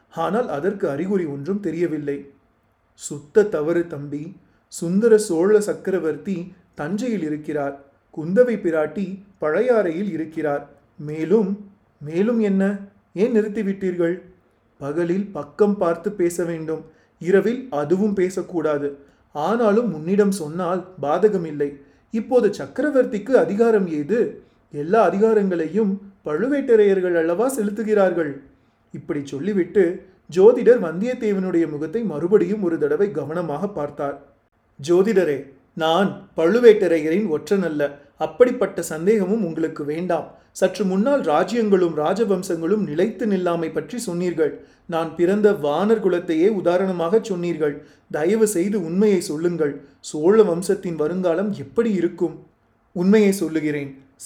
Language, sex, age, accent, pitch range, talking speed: Tamil, male, 30-49, native, 155-205 Hz, 95 wpm